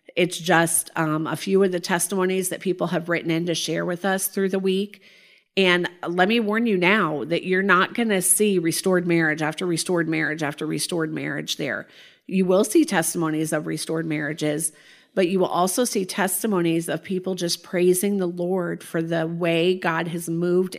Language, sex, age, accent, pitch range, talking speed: English, female, 40-59, American, 165-195 Hz, 190 wpm